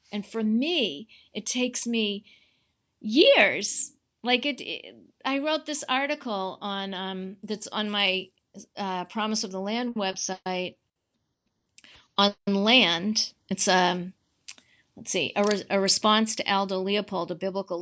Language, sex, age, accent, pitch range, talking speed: English, female, 40-59, American, 195-245 Hz, 130 wpm